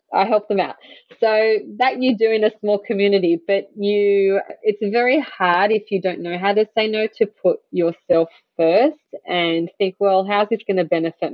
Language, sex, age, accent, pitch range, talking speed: English, female, 20-39, Australian, 180-235 Hz, 195 wpm